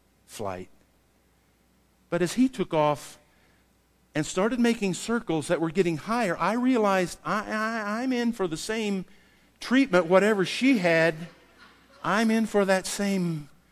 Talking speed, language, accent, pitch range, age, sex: 130 wpm, English, American, 160-220 Hz, 50-69, male